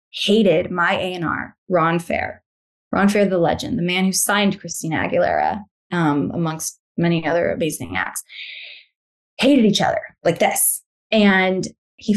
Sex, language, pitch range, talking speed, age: female, English, 175-220 Hz, 140 wpm, 20-39